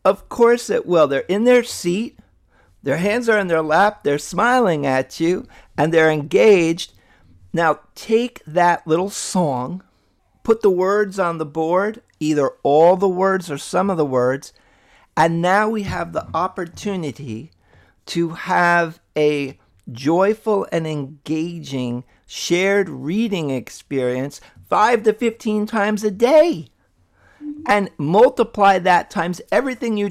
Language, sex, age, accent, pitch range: Chinese, male, 50-69, American, 140-200 Hz